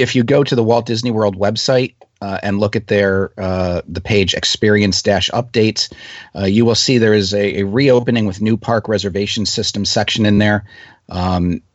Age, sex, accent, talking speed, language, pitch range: 40-59, male, American, 185 wpm, English, 100-120 Hz